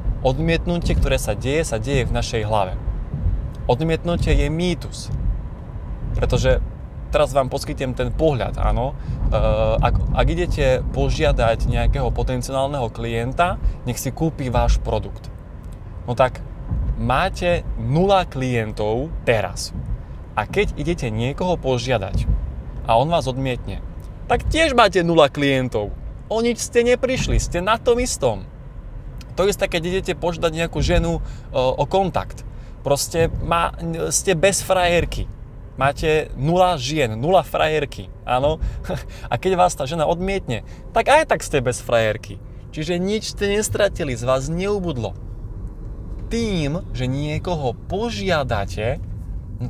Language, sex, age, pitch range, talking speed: Slovak, male, 20-39, 110-165 Hz, 125 wpm